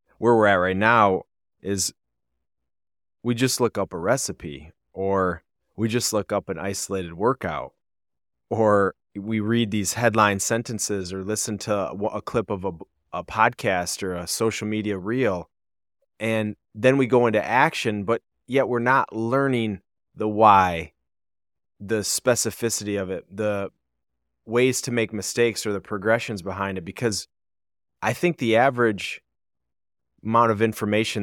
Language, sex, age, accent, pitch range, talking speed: English, male, 30-49, American, 90-115 Hz, 145 wpm